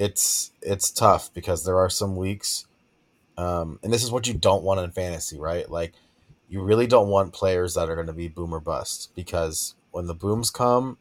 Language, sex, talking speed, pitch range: English, male, 205 wpm, 85-105 Hz